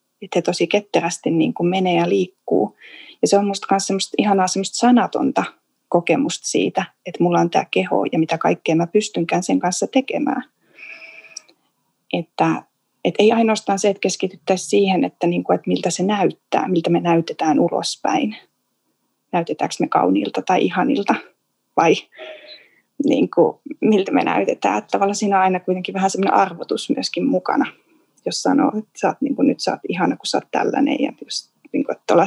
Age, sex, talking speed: 20-39, female, 160 wpm